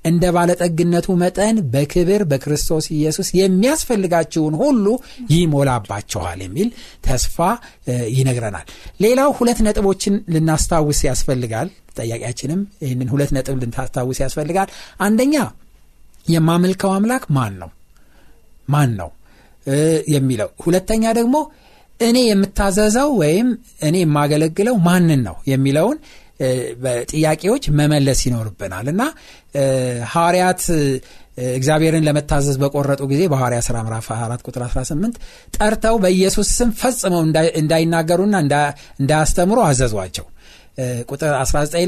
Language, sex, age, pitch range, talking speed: Amharic, male, 60-79, 135-205 Hz, 90 wpm